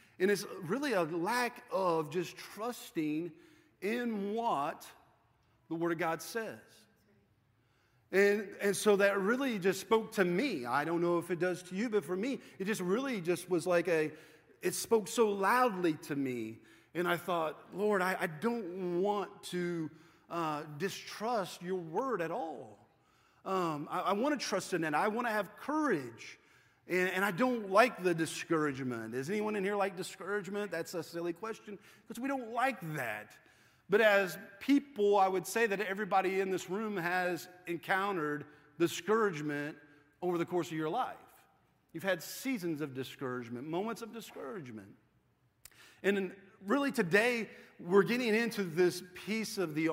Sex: male